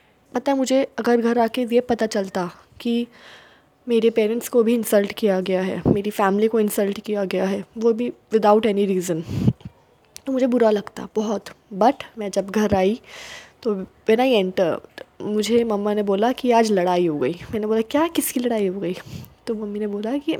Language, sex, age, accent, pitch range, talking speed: Hindi, female, 20-39, native, 200-235 Hz, 195 wpm